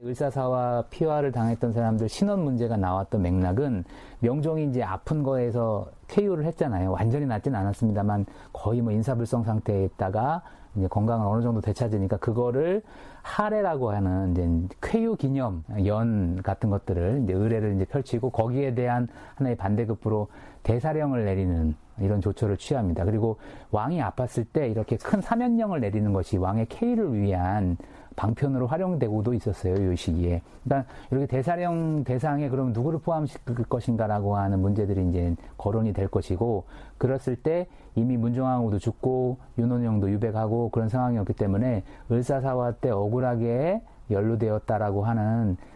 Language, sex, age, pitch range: Korean, male, 40-59, 100-135 Hz